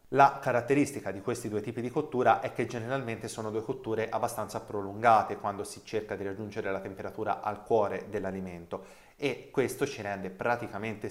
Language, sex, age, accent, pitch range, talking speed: Italian, male, 30-49, native, 100-120 Hz, 165 wpm